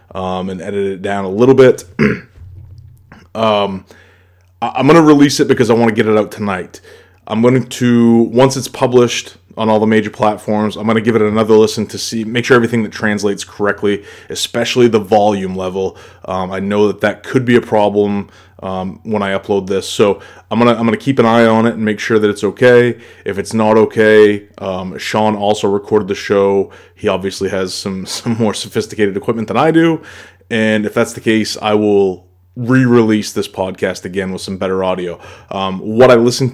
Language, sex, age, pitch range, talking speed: English, male, 30-49, 100-115 Hz, 200 wpm